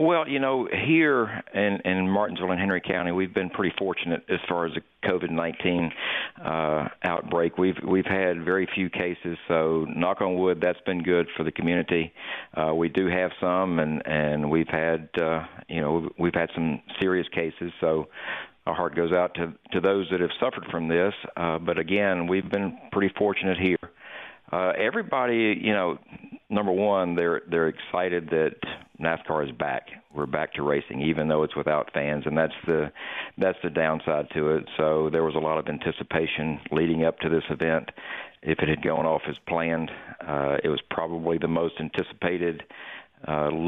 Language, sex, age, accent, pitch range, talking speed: English, male, 50-69, American, 80-95 Hz, 185 wpm